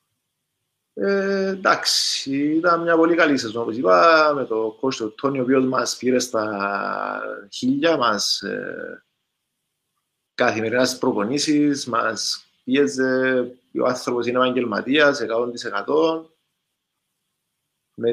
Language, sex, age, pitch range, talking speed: Greek, male, 20-39, 120-160 Hz, 95 wpm